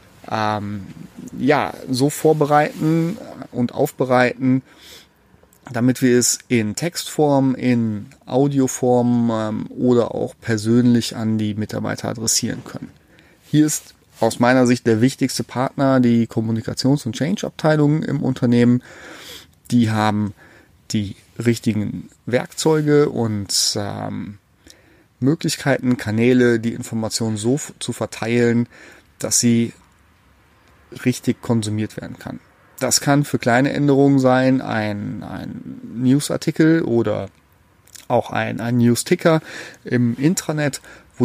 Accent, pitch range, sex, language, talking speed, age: German, 110-135 Hz, male, German, 110 wpm, 30-49